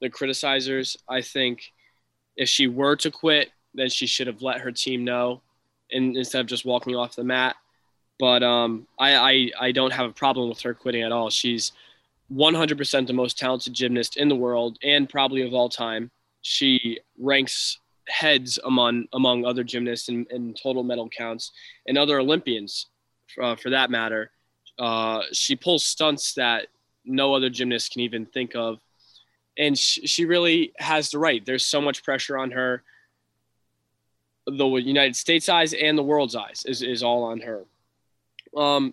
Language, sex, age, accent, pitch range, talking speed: English, male, 20-39, American, 120-140 Hz, 170 wpm